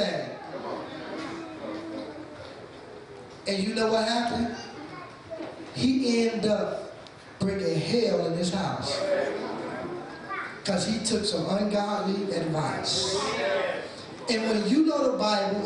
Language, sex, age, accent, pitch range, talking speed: English, male, 20-39, American, 200-330 Hz, 95 wpm